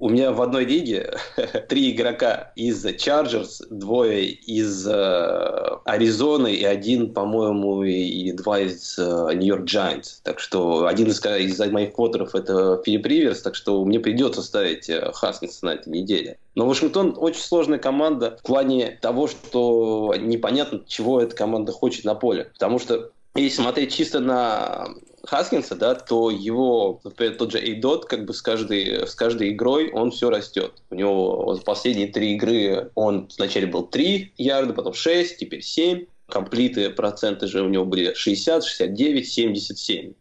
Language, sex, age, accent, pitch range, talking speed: Russian, male, 20-39, native, 100-150 Hz, 165 wpm